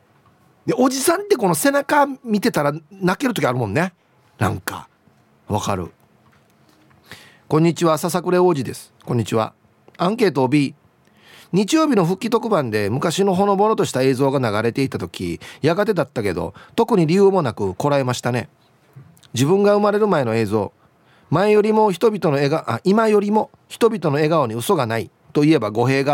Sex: male